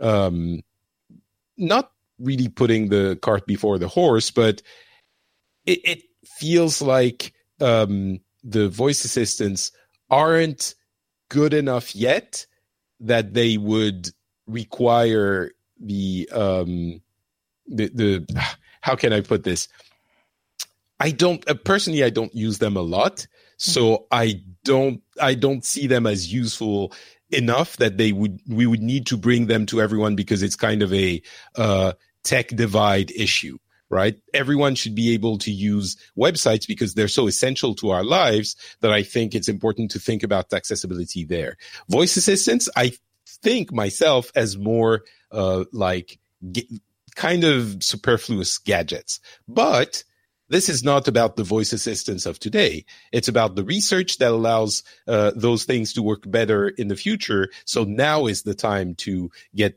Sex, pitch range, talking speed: male, 100-120 Hz, 145 wpm